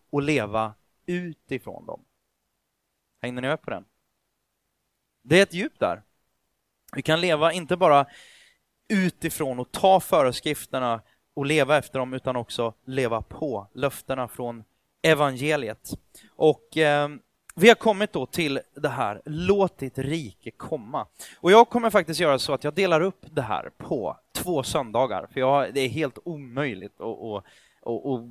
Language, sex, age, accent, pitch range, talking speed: Swedish, male, 30-49, native, 130-180 Hz, 140 wpm